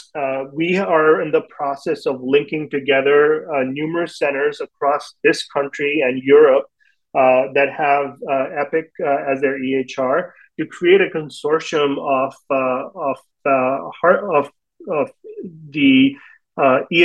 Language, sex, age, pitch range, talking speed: English, male, 30-49, 135-160 Hz, 135 wpm